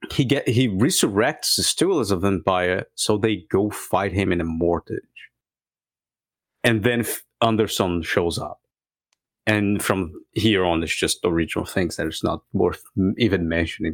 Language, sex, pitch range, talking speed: English, male, 95-140 Hz, 165 wpm